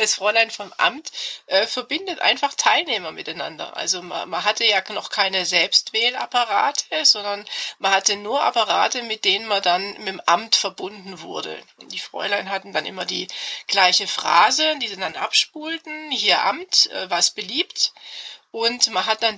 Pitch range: 185-230 Hz